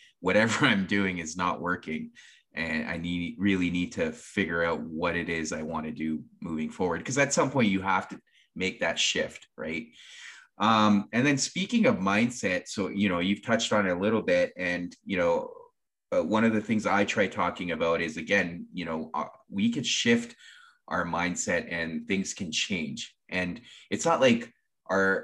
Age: 20-39